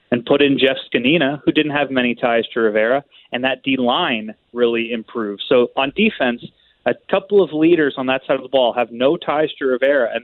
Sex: male